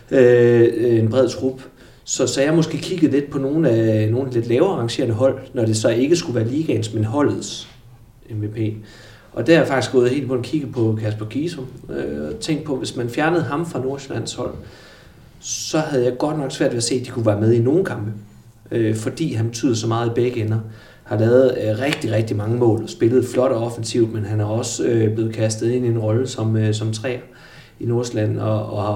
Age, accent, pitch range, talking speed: 30-49, native, 110-125 Hz, 230 wpm